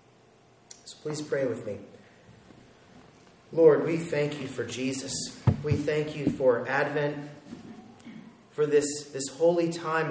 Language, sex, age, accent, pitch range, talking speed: English, male, 30-49, American, 120-150 Hz, 125 wpm